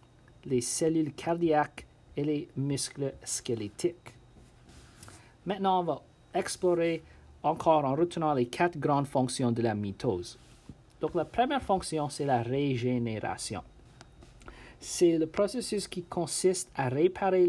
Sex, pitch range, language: male, 125-175 Hz, French